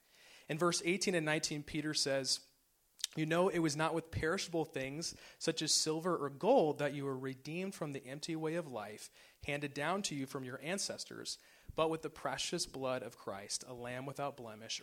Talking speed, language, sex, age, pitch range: 195 wpm, English, male, 30-49, 135-165 Hz